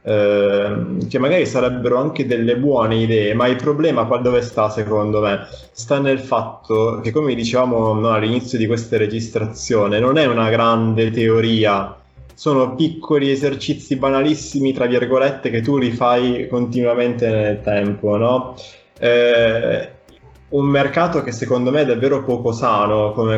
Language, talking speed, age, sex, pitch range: Italian, 145 wpm, 20-39, male, 115-135 Hz